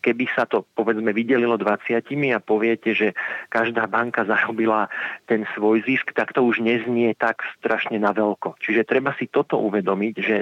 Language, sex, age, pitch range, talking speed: Slovak, male, 40-59, 110-130 Hz, 165 wpm